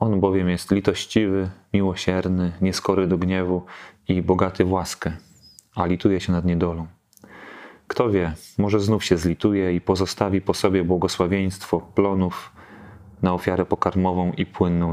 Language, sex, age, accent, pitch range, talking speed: Polish, male, 30-49, native, 90-100 Hz, 135 wpm